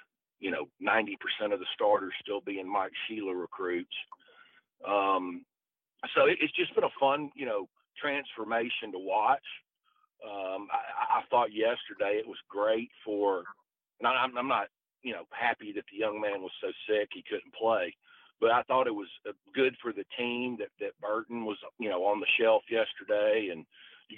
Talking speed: 175 wpm